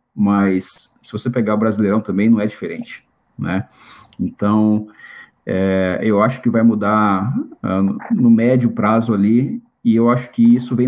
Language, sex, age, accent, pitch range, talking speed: Portuguese, male, 40-59, Brazilian, 100-120 Hz, 160 wpm